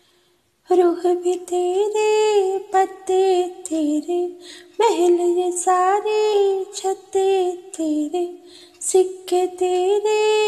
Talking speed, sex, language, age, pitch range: 65 wpm, female, Punjabi, 20-39, 360-410 Hz